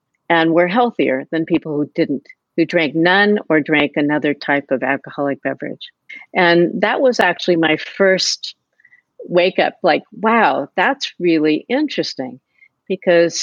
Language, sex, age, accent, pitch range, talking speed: English, female, 50-69, American, 160-195 Hz, 140 wpm